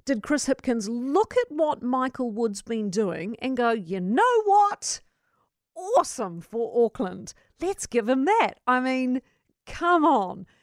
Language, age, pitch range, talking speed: English, 50-69, 215-280 Hz, 145 wpm